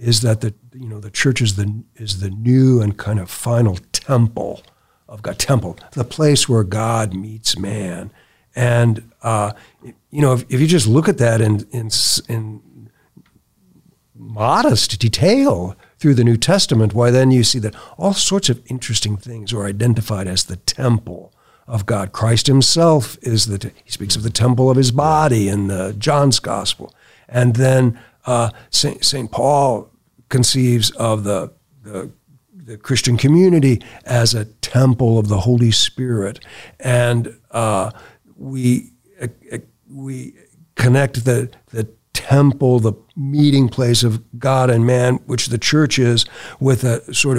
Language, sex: English, male